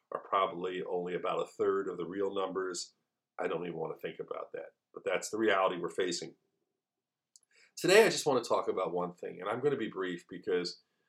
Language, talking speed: English, 215 wpm